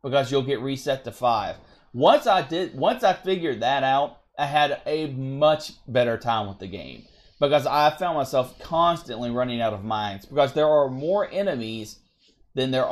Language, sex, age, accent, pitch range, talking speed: English, male, 30-49, American, 120-150 Hz, 180 wpm